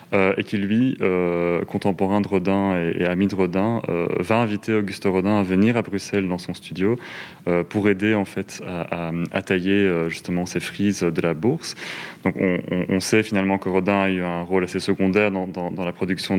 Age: 30-49